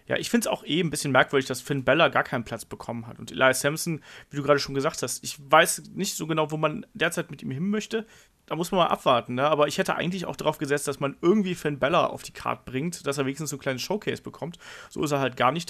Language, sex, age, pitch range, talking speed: German, male, 30-49, 135-175 Hz, 285 wpm